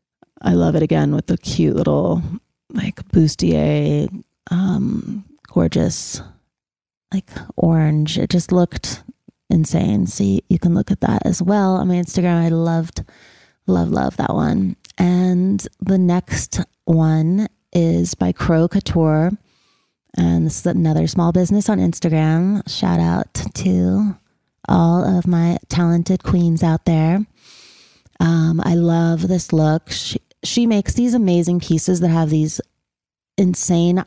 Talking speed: 135 wpm